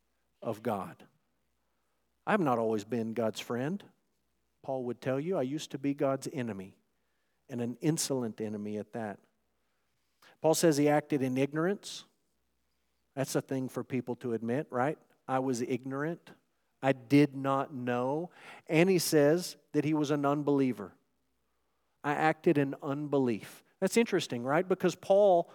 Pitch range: 130-175 Hz